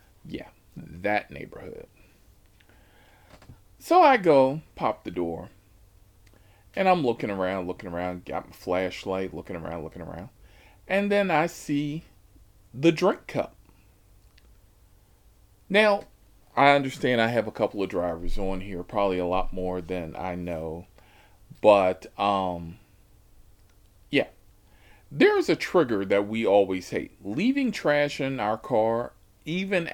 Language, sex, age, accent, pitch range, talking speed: English, male, 40-59, American, 95-125 Hz, 125 wpm